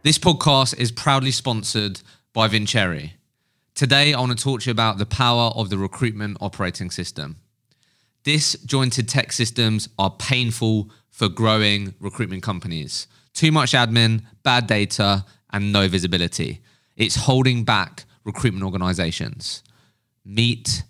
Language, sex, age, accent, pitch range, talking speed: English, male, 20-39, British, 100-125 Hz, 130 wpm